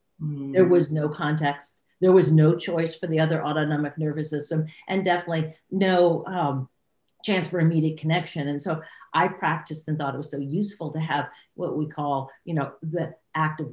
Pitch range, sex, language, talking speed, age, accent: 155-185 Hz, female, English, 185 wpm, 50-69, American